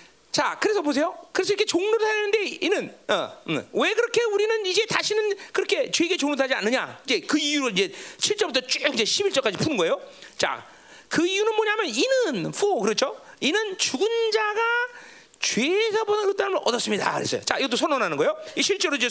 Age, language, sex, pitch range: 40-59, Korean, male, 290-440 Hz